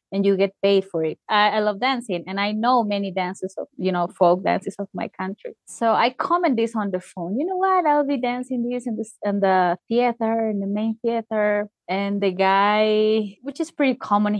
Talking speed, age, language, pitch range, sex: 220 wpm, 20-39, English, 200-285 Hz, female